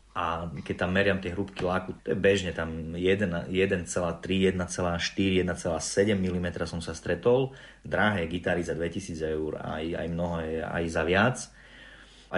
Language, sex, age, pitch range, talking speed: Slovak, male, 30-49, 85-100 Hz, 150 wpm